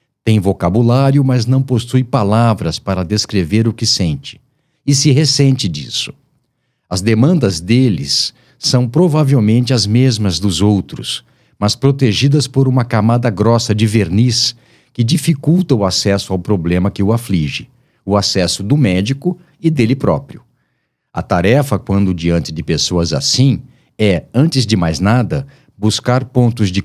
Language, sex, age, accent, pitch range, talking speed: Portuguese, male, 50-69, Brazilian, 100-135 Hz, 140 wpm